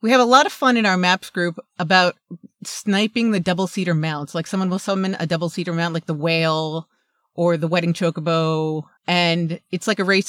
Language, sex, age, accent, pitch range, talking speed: English, female, 30-49, American, 175-240 Hz, 200 wpm